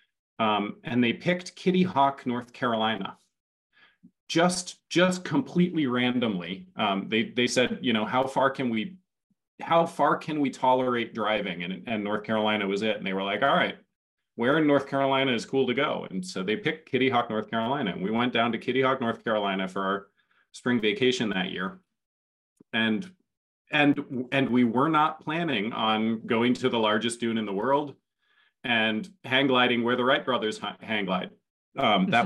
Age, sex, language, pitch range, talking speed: 30-49, male, English, 110-140 Hz, 180 wpm